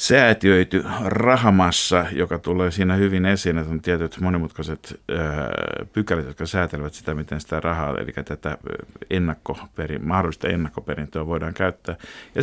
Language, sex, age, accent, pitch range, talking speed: Finnish, male, 50-69, native, 80-105 Hz, 120 wpm